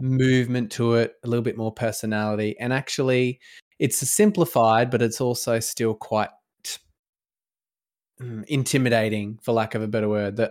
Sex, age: male, 20-39